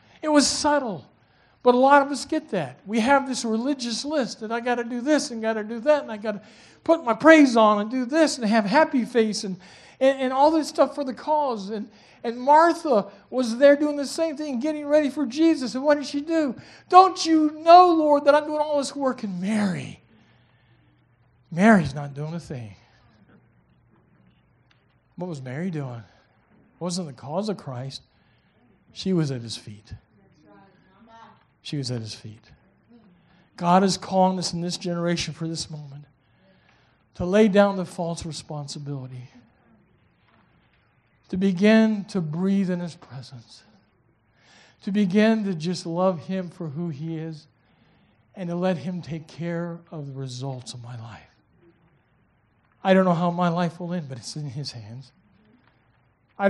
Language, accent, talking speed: English, American, 175 wpm